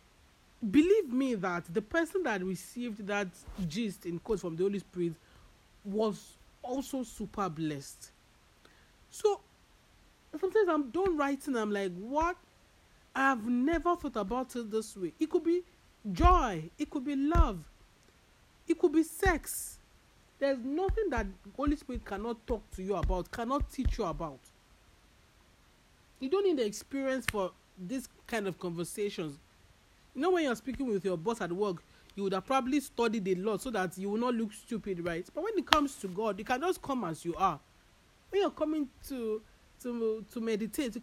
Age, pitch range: 40-59, 200-285 Hz